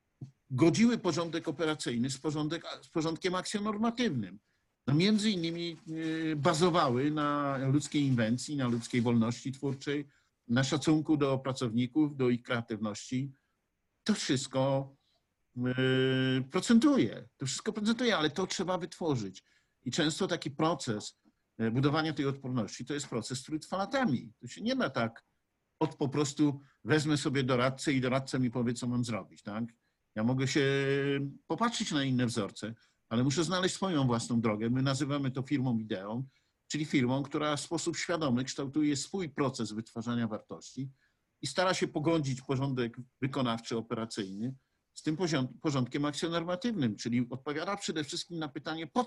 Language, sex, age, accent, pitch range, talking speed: Polish, male, 50-69, native, 120-160 Hz, 140 wpm